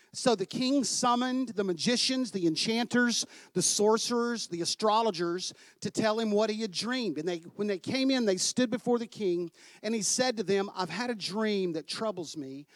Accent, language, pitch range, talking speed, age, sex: American, English, 195-255 Hz, 200 wpm, 50-69, male